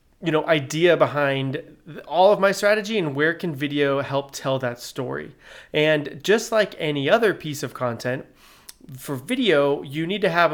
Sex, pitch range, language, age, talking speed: male, 140-170 Hz, English, 30-49, 170 wpm